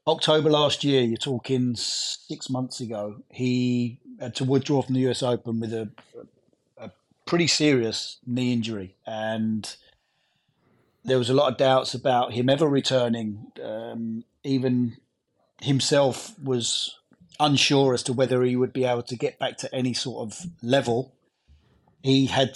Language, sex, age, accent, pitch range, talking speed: English, male, 30-49, British, 120-140 Hz, 150 wpm